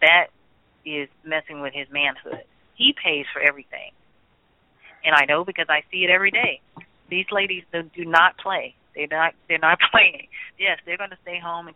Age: 30-49